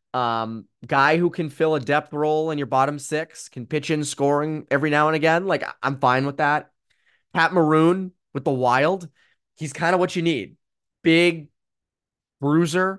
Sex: male